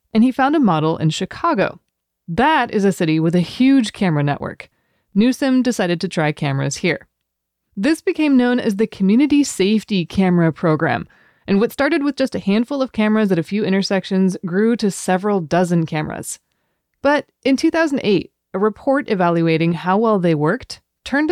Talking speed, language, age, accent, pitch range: 170 wpm, English, 30-49, American, 170-235 Hz